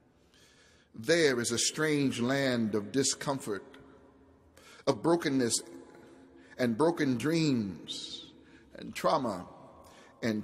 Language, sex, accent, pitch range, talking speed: English, male, American, 115-165 Hz, 85 wpm